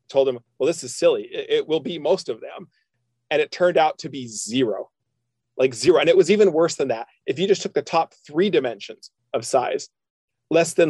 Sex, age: male, 40-59